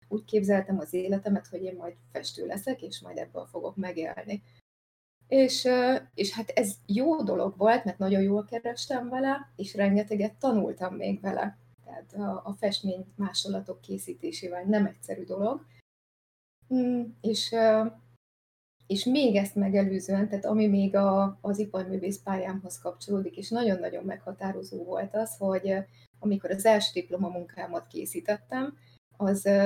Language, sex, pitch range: Hungarian, female, 180-215 Hz